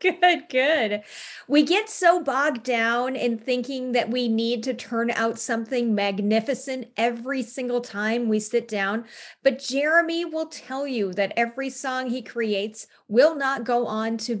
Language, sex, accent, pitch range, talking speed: English, female, American, 220-280 Hz, 160 wpm